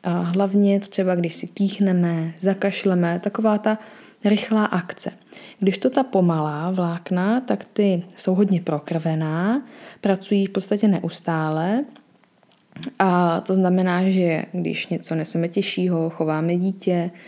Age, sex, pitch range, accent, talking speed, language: 20-39, female, 175-205 Hz, native, 120 wpm, Czech